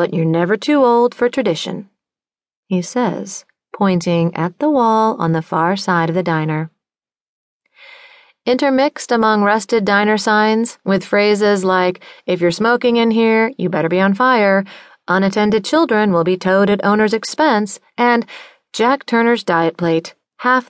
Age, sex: 30-49, female